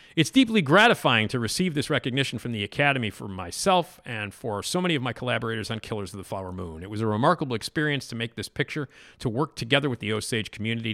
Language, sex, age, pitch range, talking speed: English, male, 40-59, 105-145 Hz, 225 wpm